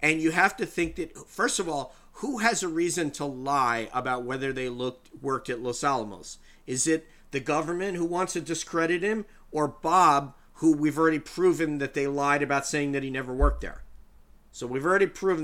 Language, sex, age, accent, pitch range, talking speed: English, male, 40-59, American, 130-165 Hz, 200 wpm